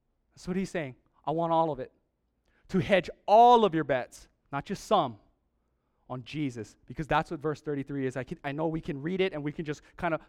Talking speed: 235 wpm